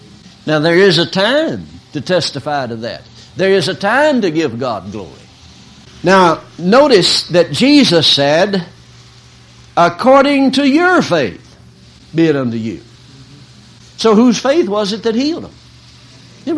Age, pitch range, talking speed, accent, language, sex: 60-79, 170-270 Hz, 140 wpm, American, English, male